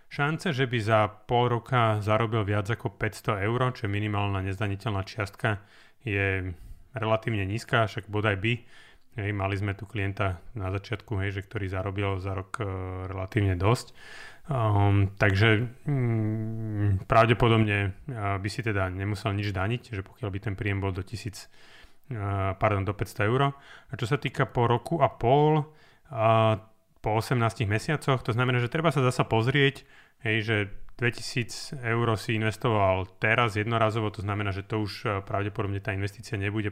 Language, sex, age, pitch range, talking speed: Slovak, male, 30-49, 100-120 Hz, 160 wpm